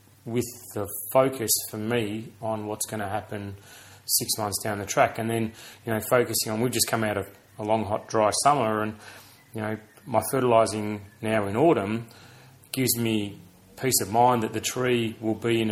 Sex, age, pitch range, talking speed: male, 30-49, 105-125 Hz, 190 wpm